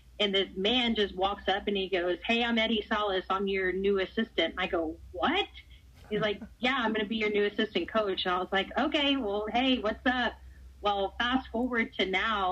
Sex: female